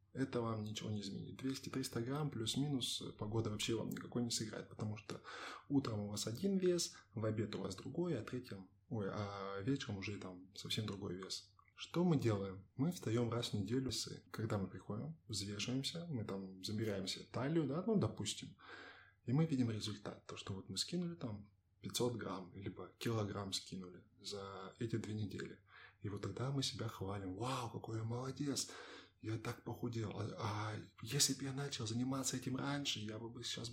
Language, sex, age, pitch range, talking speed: Russian, male, 20-39, 100-130 Hz, 170 wpm